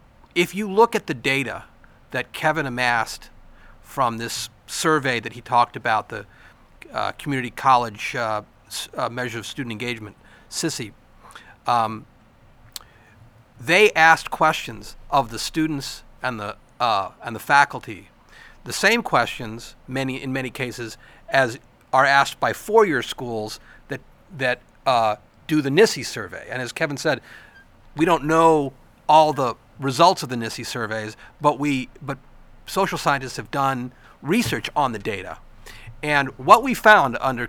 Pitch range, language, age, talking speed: 115-160 Hz, English, 40-59, 145 wpm